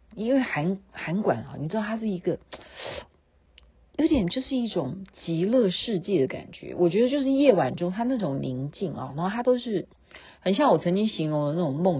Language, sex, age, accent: Chinese, female, 50-69, native